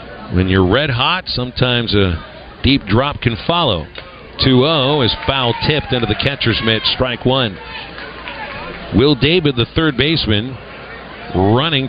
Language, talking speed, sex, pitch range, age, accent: English, 125 wpm, male, 110-145 Hz, 50-69, American